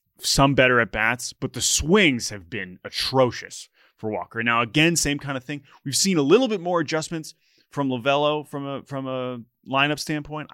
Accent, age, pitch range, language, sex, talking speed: American, 20-39, 110-135 Hz, English, male, 190 wpm